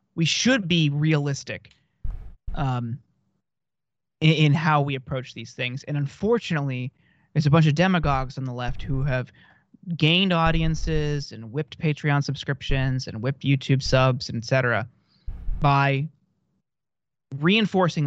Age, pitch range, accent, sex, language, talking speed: 30-49, 125-155 Hz, American, male, English, 130 wpm